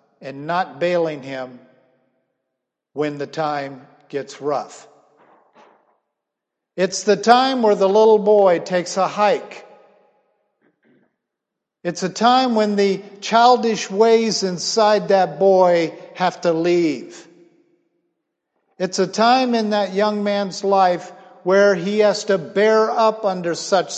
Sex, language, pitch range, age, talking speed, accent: male, English, 170-225 Hz, 50-69, 120 wpm, American